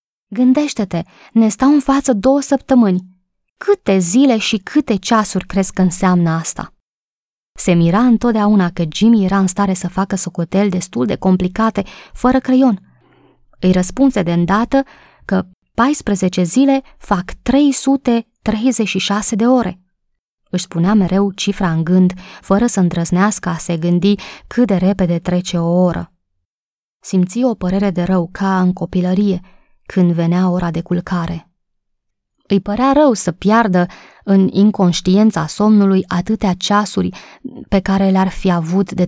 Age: 20-39